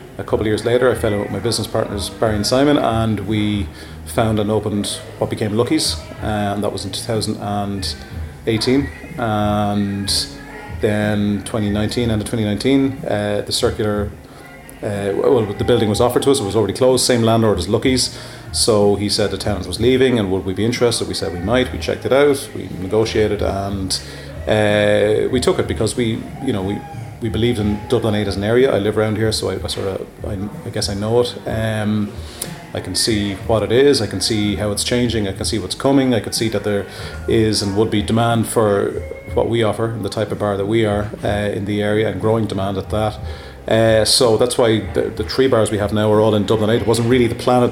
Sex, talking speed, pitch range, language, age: male, 230 wpm, 100-115 Hz, English, 30-49